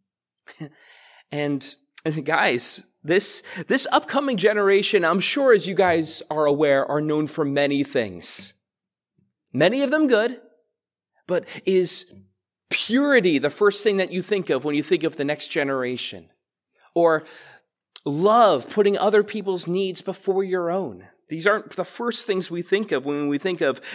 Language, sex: English, male